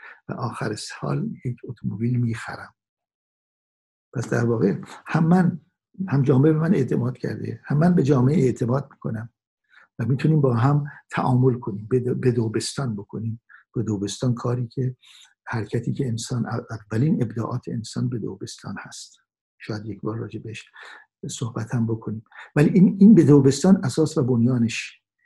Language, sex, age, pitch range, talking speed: Persian, male, 60-79, 115-155 Hz, 135 wpm